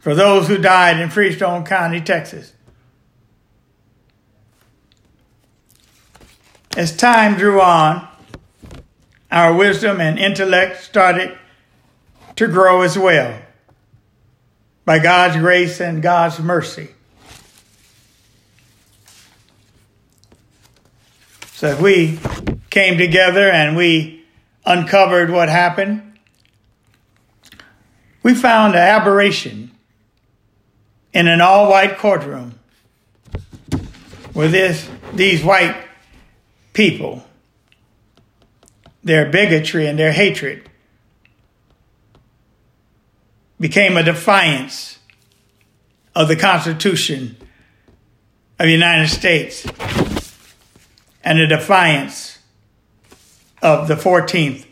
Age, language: 60-79, English